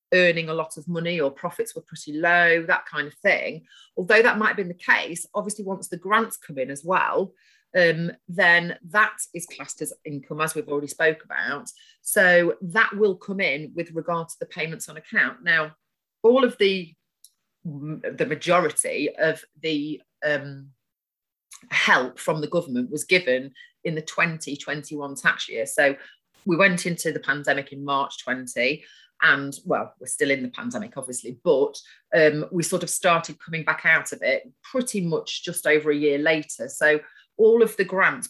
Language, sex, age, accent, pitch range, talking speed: English, female, 30-49, British, 155-190 Hz, 180 wpm